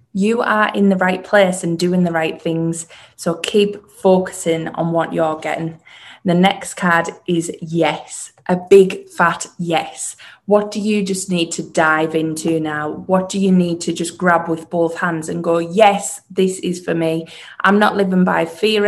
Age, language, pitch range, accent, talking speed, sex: 20-39, English, 165-185 Hz, British, 185 wpm, female